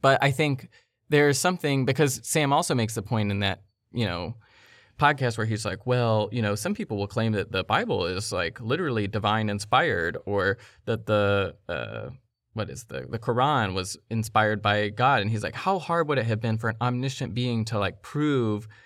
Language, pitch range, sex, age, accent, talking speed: English, 105-130 Hz, male, 20-39, American, 205 wpm